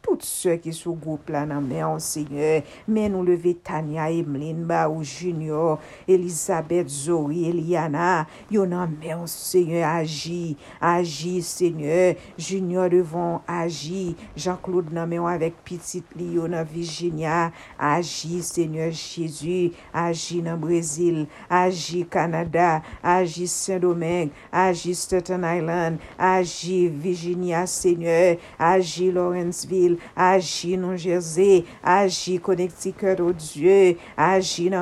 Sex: female